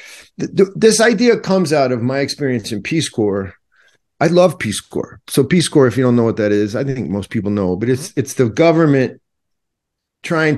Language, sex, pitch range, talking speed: English, male, 100-135 Hz, 200 wpm